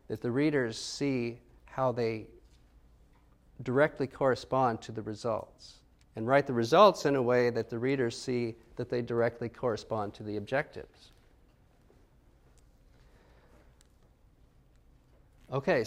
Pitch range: 120-150 Hz